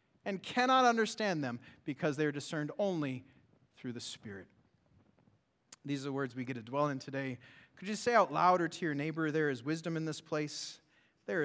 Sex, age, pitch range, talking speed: male, 30-49, 155-240 Hz, 195 wpm